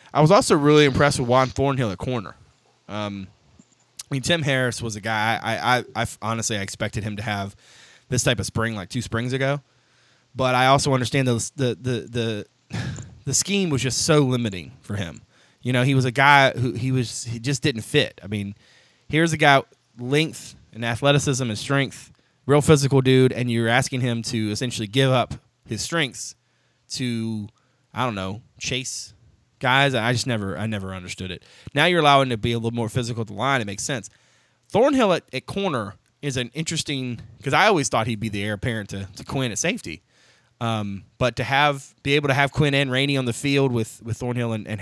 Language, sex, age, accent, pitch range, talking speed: English, male, 20-39, American, 110-135 Hz, 210 wpm